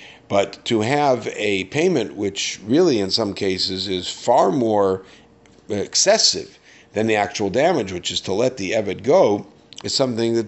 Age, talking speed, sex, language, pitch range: 50-69, 160 wpm, male, English, 100-125 Hz